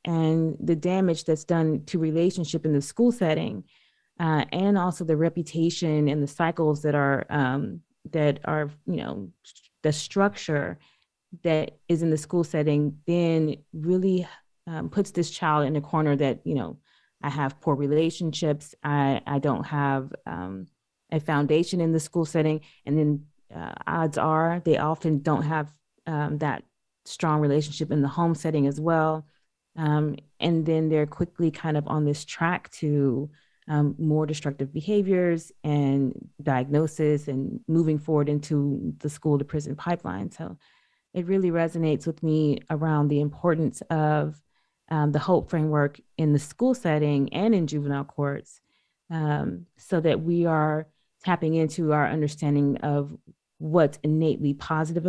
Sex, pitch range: female, 145-165 Hz